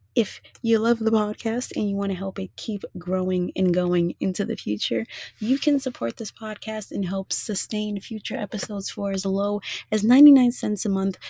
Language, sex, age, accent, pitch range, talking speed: English, female, 20-39, American, 160-215 Hz, 190 wpm